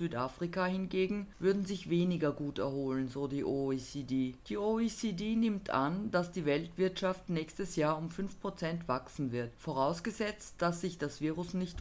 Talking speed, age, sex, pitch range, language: 145 wpm, 50-69, female, 145-195 Hz, German